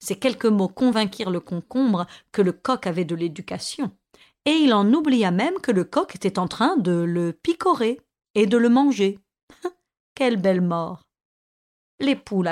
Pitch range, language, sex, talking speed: 190-270 Hz, French, female, 170 wpm